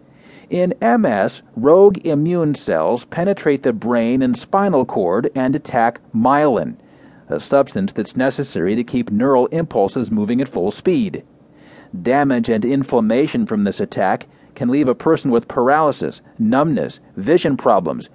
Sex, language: male, English